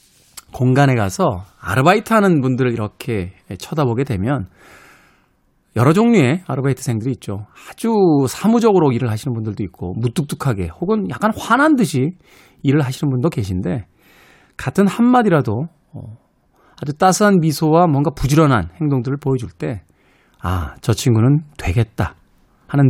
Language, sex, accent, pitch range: Korean, male, native, 110-165 Hz